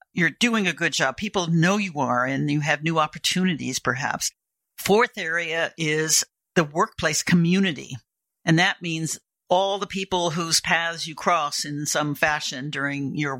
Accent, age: American, 60-79